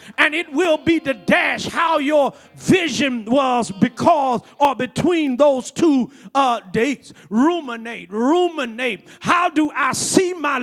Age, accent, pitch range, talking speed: 40-59, American, 235-305 Hz, 135 wpm